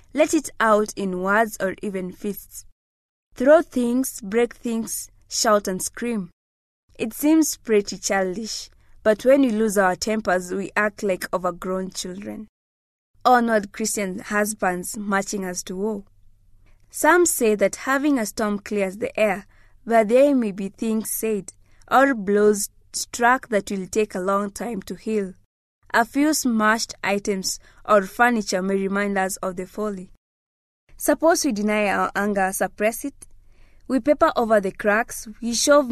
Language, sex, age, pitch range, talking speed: English, female, 20-39, 195-235 Hz, 150 wpm